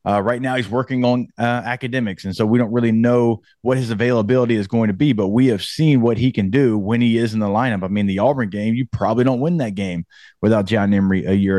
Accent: American